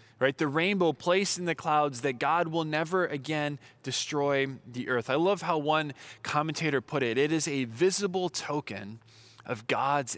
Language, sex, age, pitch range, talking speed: English, male, 20-39, 120-155 Hz, 170 wpm